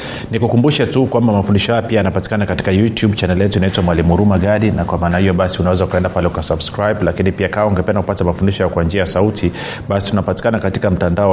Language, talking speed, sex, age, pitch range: Swahili, 180 wpm, male, 30-49, 90-105 Hz